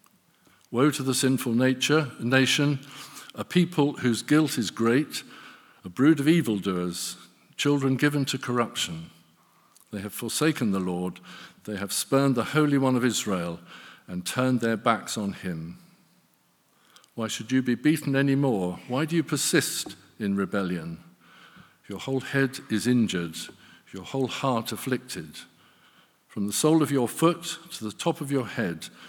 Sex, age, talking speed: male, 50-69, 150 wpm